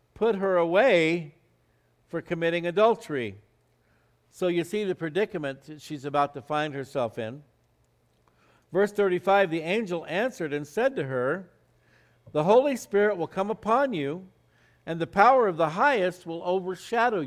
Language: English